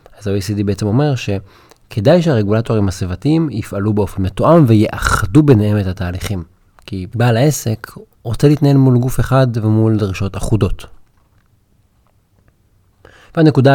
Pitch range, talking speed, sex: 100-130 Hz, 115 wpm, male